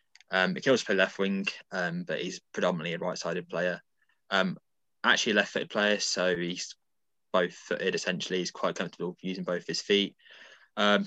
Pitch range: 90-110 Hz